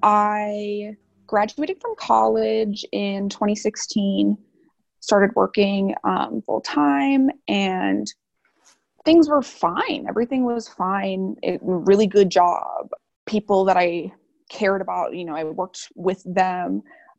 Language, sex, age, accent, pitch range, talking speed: English, female, 20-39, American, 190-245 Hz, 115 wpm